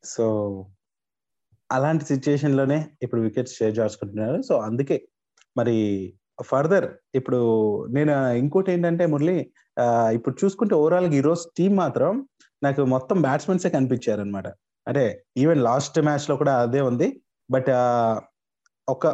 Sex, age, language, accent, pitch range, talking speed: male, 30-49, Telugu, native, 120-155 Hz, 115 wpm